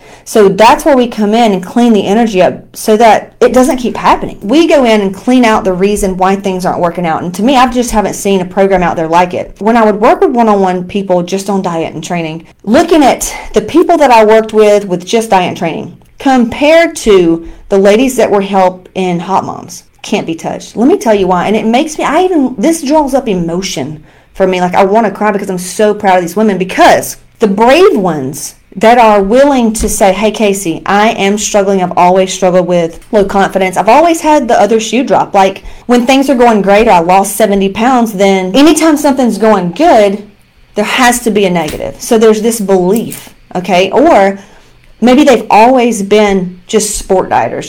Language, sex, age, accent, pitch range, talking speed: English, female, 40-59, American, 185-235 Hz, 215 wpm